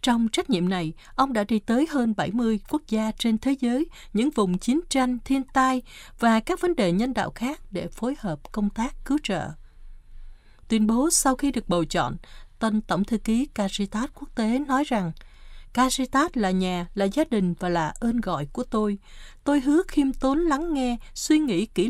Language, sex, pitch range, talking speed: Vietnamese, female, 185-265 Hz, 195 wpm